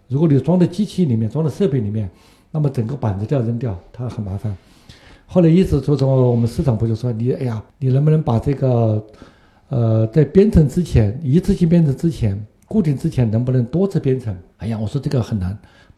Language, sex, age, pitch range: Chinese, male, 60-79, 115-150 Hz